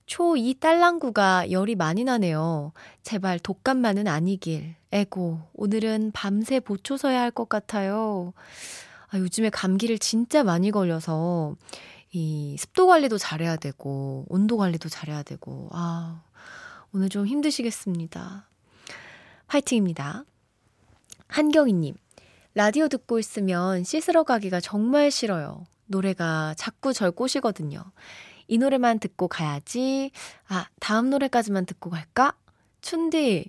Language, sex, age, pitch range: Korean, female, 20-39, 175-255 Hz